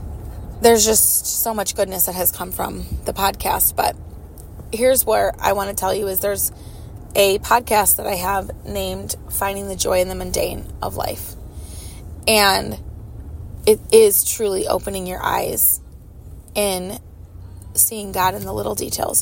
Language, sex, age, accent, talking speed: English, female, 20-39, American, 155 wpm